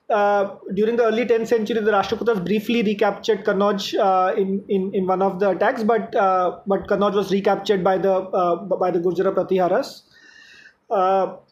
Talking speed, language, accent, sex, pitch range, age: 170 wpm, English, Indian, male, 195-235 Hz, 30-49